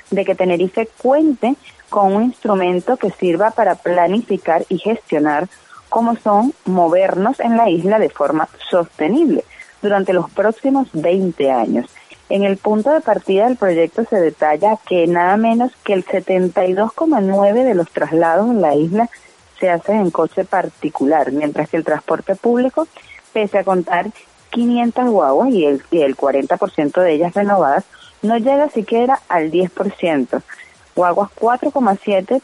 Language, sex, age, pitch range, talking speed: Spanish, female, 30-49, 175-230 Hz, 140 wpm